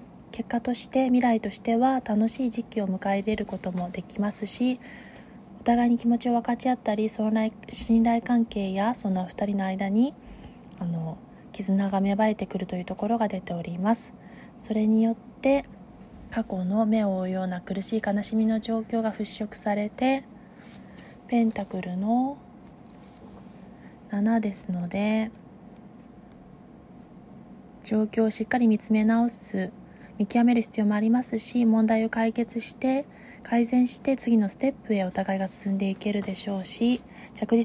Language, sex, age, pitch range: Japanese, female, 20-39, 200-235 Hz